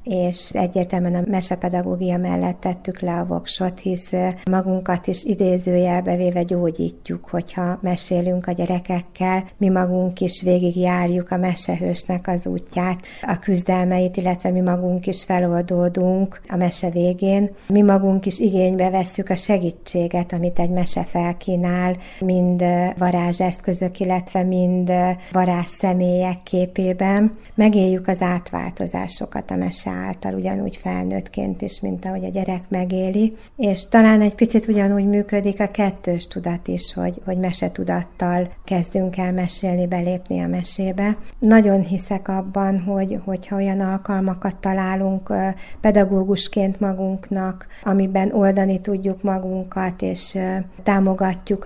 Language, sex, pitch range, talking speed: Hungarian, female, 180-195 Hz, 120 wpm